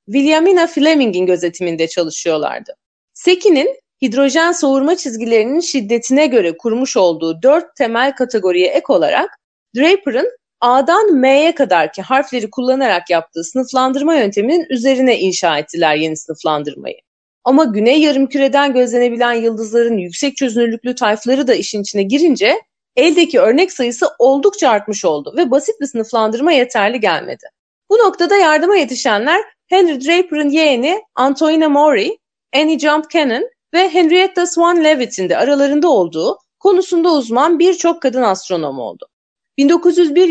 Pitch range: 230-340 Hz